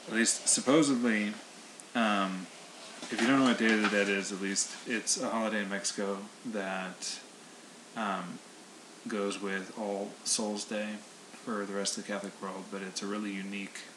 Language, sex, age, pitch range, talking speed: English, male, 20-39, 95-105 Hz, 170 wpm